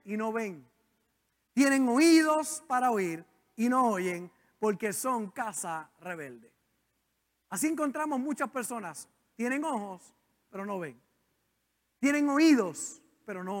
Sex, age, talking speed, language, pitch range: male, 50-69, 120 wpm, Spanish, 220-290 Hz